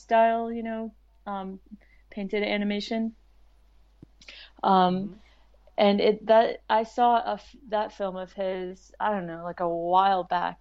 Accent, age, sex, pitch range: American, 30-49, female, 180-220 Hz